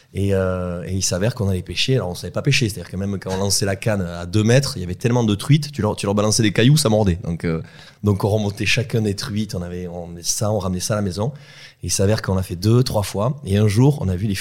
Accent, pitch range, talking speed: French, 95-120 Hz, 310 wpm